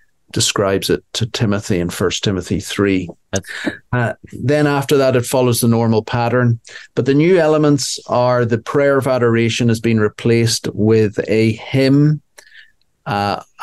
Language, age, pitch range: English, 40-59, 105-120 Hz